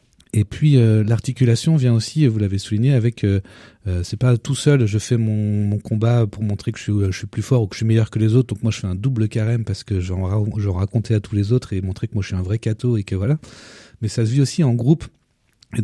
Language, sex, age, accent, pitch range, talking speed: French, male, 40-59, French, 105-125 Hz, 280 wpm